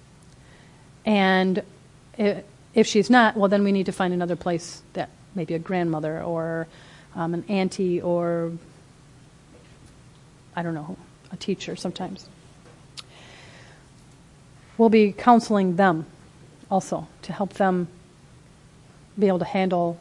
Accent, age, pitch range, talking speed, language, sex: American, 40-59, 160-195 Hz, 115 wpm, English, female